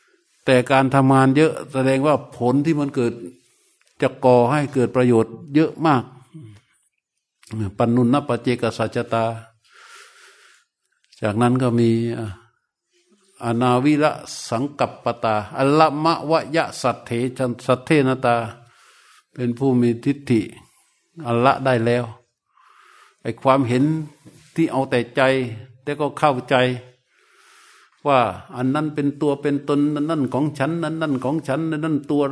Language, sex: Thai, male